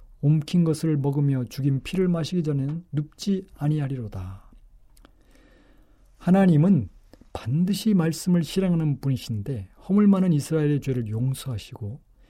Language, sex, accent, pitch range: Korean, male, native, 125-165 Hz